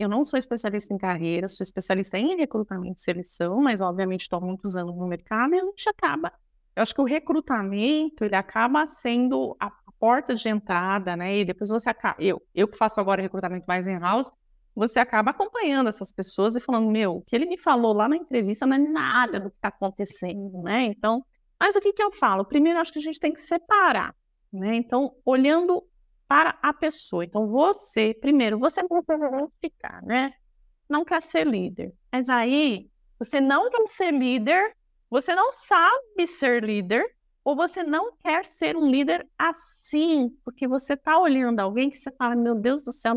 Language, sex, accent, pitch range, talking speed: Portuguese, female, Brazilian, 210-310 Hz, 190 wpm